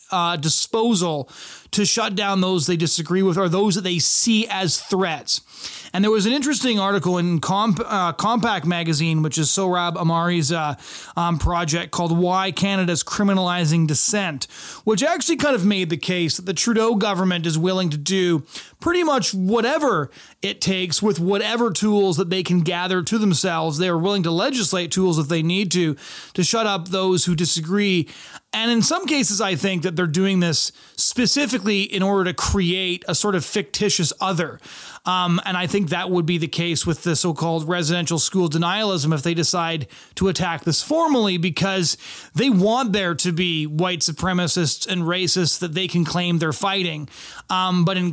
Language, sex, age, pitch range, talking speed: English, male, 30-49, 170-200 Hz, 180 wpm